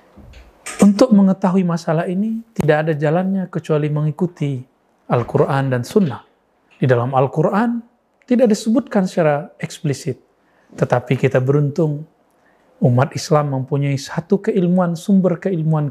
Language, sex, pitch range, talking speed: Indonesian, male, 135-180 Hz, 110 wpm